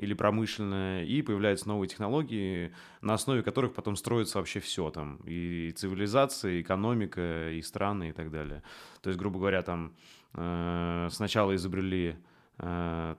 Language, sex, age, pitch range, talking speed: Russian, male, 20-39, 90-115 Hz, 145 wpm